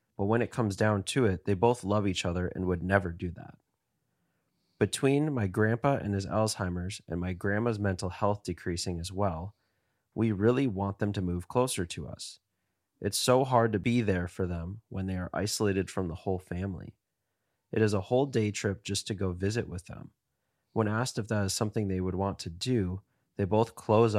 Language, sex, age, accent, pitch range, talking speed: English, male, 30-49, American, 95-115 Hz, 205 wpm